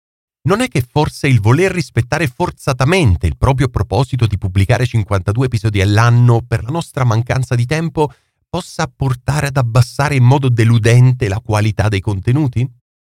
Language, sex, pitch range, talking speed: Italian, male, 105-145 Hz, 150 wpm